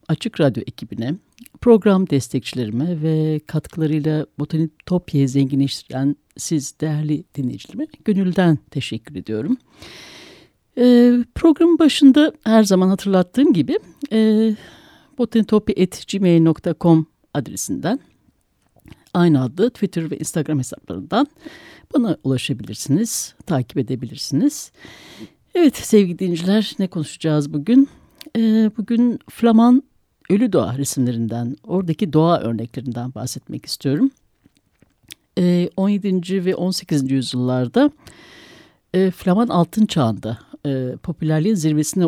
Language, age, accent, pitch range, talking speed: Turkish, 60-79, native, 135-220 Hz, 85 wpm